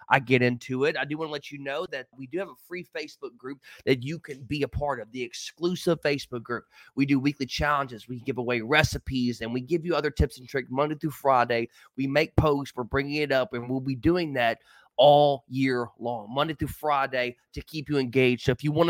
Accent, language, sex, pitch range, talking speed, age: American, English, male, 130-155 Hz, 240 wpm, 20-39